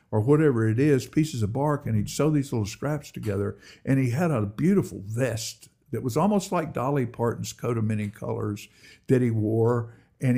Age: 60-79